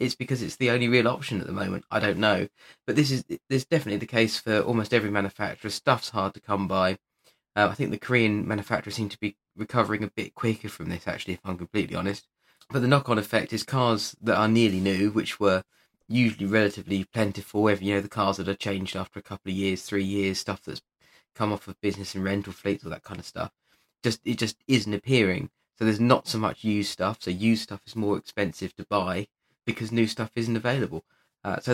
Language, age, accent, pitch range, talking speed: English, 20-39, British, 100-115 Hz, 230 wpm